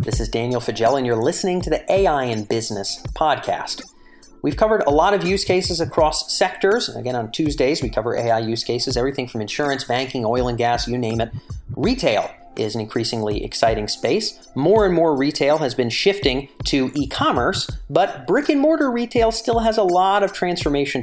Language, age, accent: English, 40-59, American